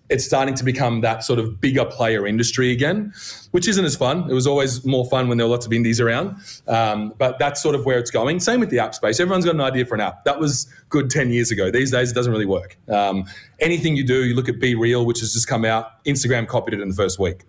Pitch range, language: 115-135 Hz, English